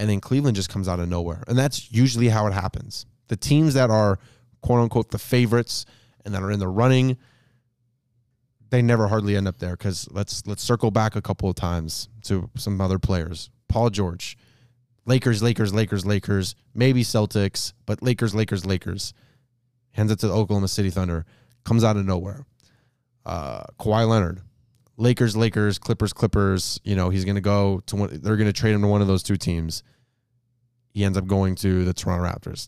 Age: 20-39